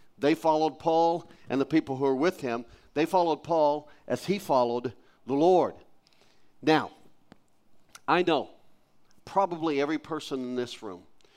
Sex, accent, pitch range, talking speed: male, American, 135-185 Hz, 145 wpm